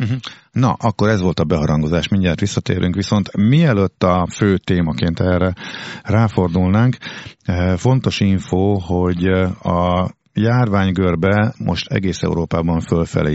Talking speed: 110 wpm